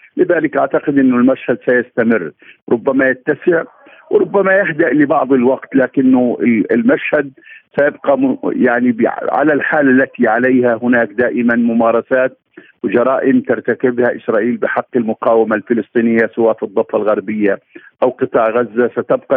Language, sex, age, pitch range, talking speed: Arabic, male, 50-69, 110-130 Hz, 110 wpm